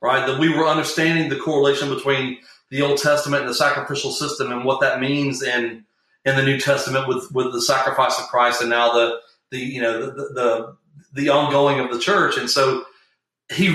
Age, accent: 40-59, American